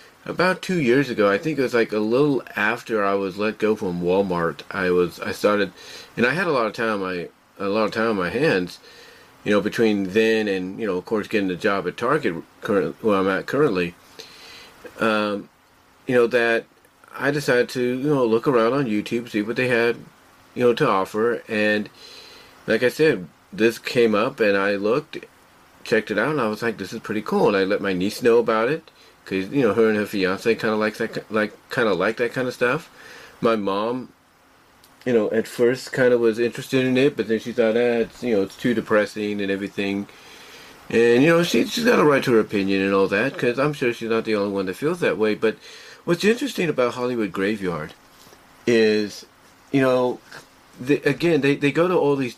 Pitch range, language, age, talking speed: 100-125 Hz, English, 40-59, 220 wpm